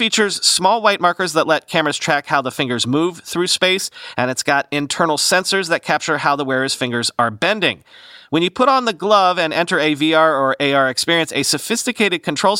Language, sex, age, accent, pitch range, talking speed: English, male, 40-59, American, 130-175 Hz, 205 wpm